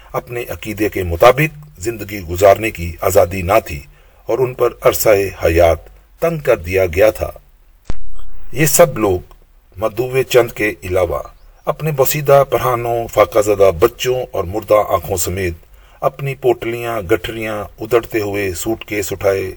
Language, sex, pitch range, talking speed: Urdu, male, 90-135 Hz, 140 wpm